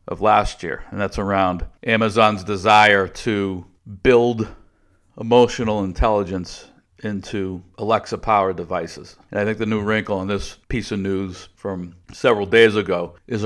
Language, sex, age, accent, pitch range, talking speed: English, male, 50-69, American, 95-110 Hz, 145 wpm